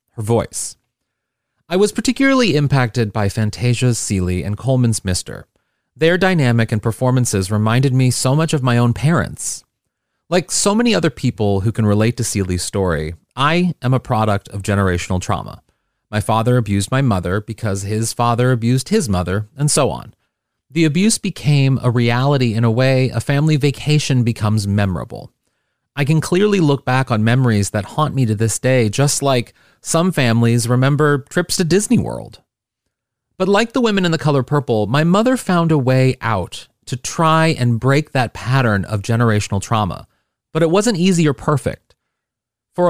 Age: 30-49